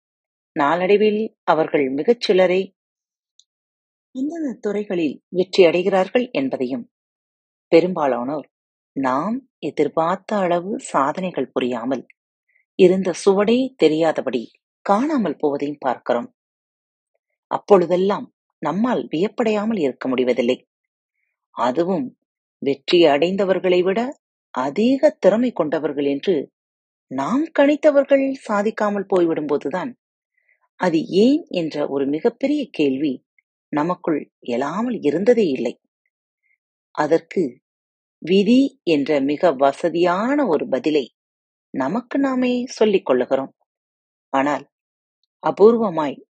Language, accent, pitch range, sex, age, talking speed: Tamil, native, 160-260 Hz, female, 30-49, 80 wpm